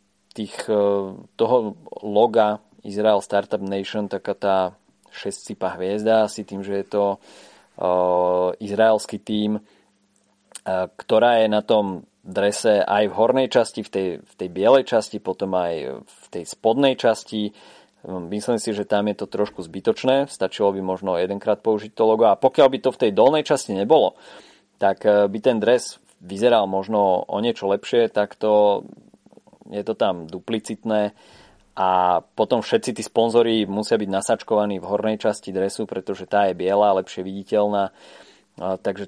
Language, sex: Slovak, male